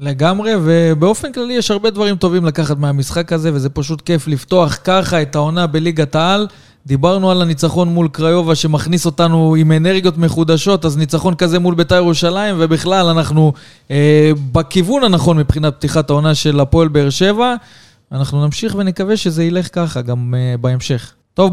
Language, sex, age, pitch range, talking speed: Hebrew, male, 20-39, 155-190 Hz, 160 wpm